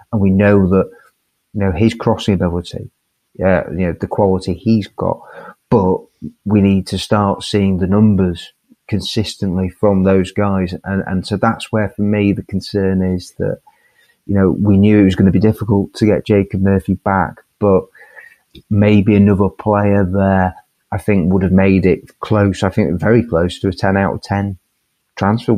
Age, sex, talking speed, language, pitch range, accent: 30-49, male, 175 wpm, English, 95-105 Hz, British